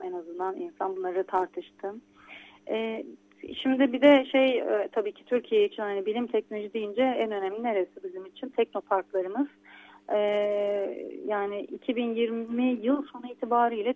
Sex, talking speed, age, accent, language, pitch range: female, 120 wpm, 30-49, native, Turkish, 200-245 Hz